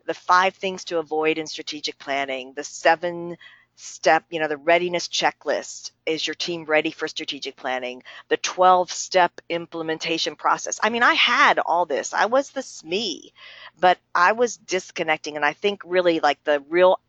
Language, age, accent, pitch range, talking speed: English, 50-69, American, 155-220 Hz, 170 wpm